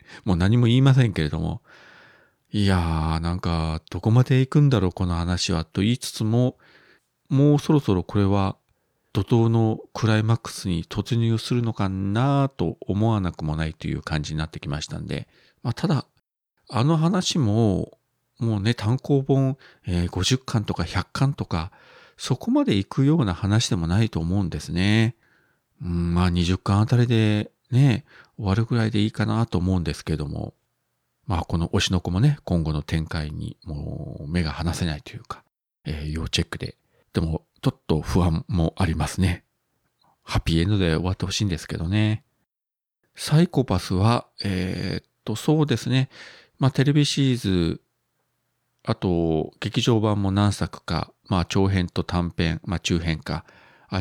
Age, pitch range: 40-59, 85-115 Hz